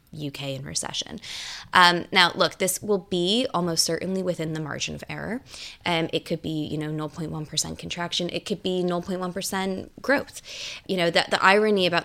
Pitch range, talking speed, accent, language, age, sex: 160-180 Hz, 175 wpm, American, English, 20-39, female